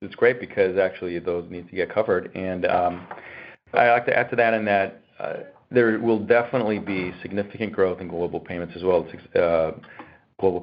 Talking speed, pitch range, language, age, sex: 185 wpm, 85-105 Hz, English, 40-59, male